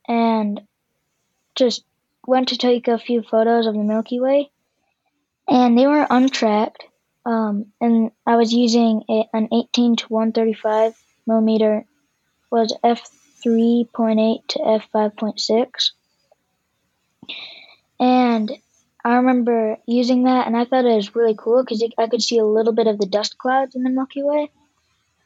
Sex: female